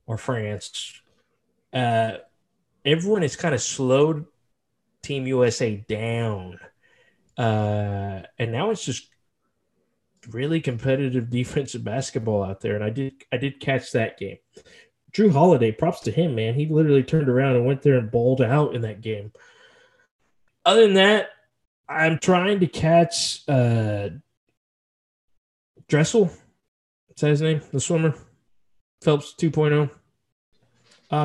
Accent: American